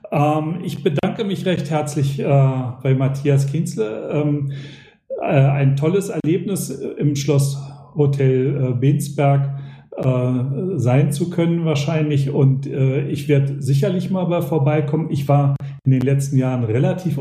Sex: male